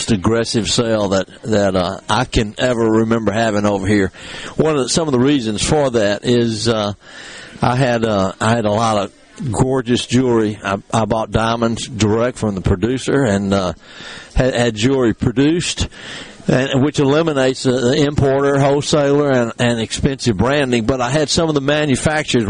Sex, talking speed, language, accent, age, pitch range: male, 170 wpm, English, American, 60-79, 115-140 Hz